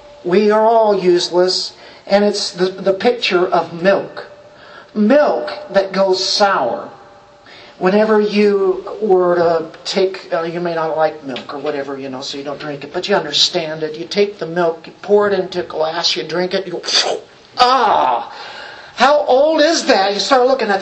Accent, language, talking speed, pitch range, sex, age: American, English, 180 wpm, 175-255 Hz, male, 50-69